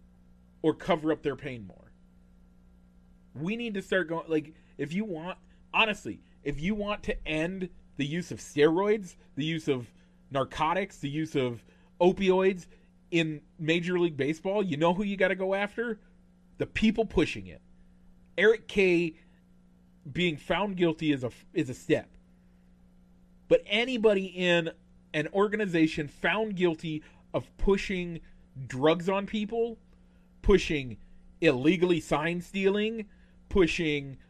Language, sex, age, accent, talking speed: English, male, 40-59, American, 130 wpm